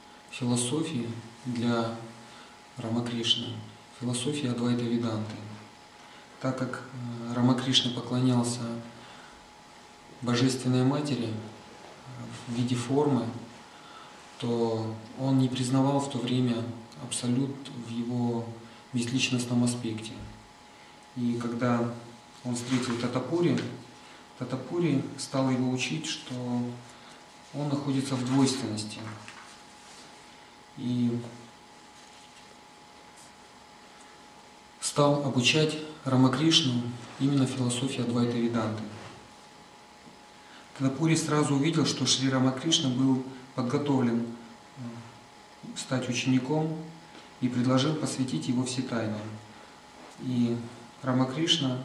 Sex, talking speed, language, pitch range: male, 75 wpm, Russian, 120-130 Hz